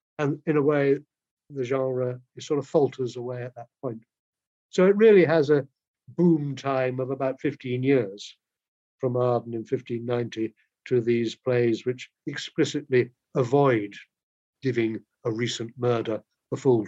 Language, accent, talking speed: English, British, 140 wpm